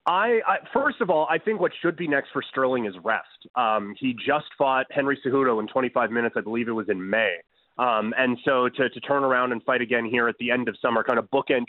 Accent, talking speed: American, 250 wpm